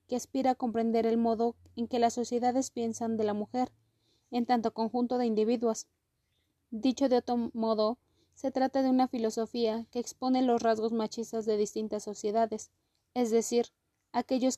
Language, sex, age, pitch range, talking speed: Spanish, female, 20-39, 220-245 Hz, 160 wpm